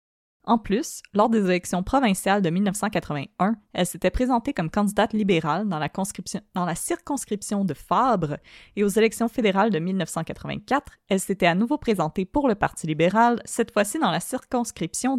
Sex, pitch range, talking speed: female, 180-225 Hz, 160 wpm